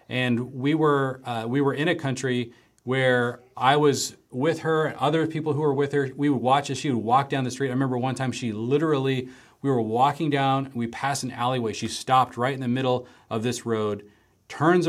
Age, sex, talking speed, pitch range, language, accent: 40-59, male, 220 wpm, 115-145 Hz, English, American